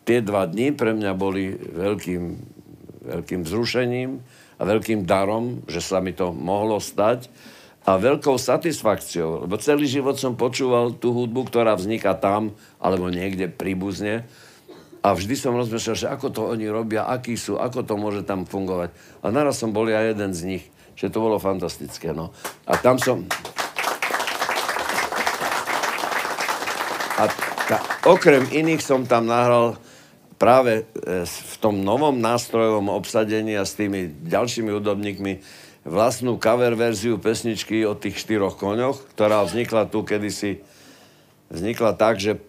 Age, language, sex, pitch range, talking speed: 60-79, Slovak, male, 95-120 Hz, 140 wpm